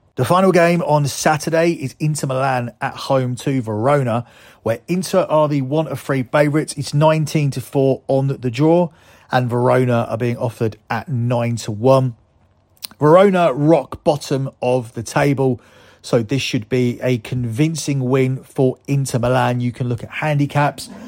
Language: English